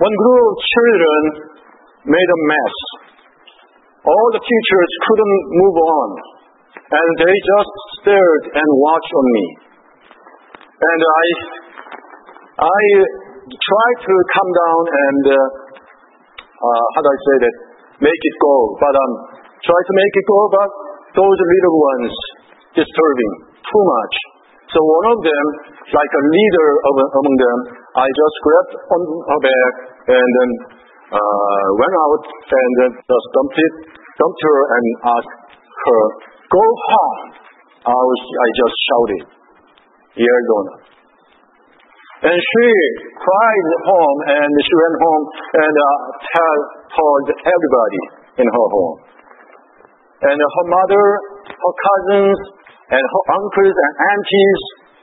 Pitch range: 140-205 Hz